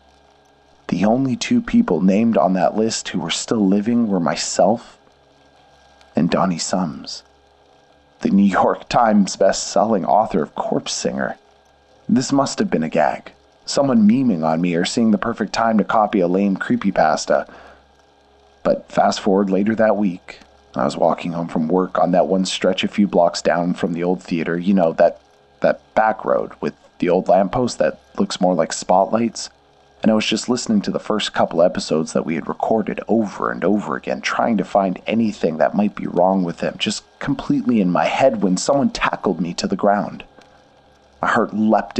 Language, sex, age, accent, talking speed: English, male, 30-49, American, 185 wpm